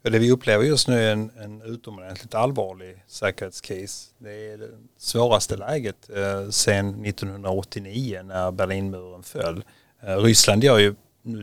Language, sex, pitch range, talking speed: Swedish, male, 95-115 Hz, 140 wpm